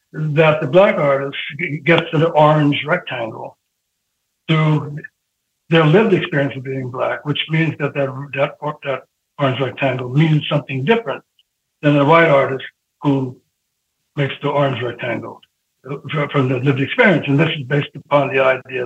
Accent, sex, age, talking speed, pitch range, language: American, male, 60-79, 150 wpm, 135-165 Hz, English